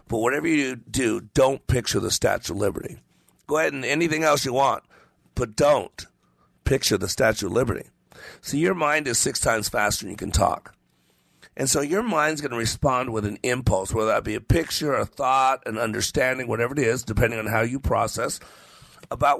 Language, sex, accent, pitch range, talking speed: English, male, American, 105-130 Hz, 195 wpm